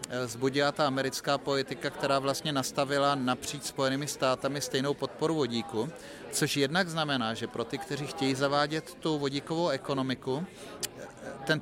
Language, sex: Czech, male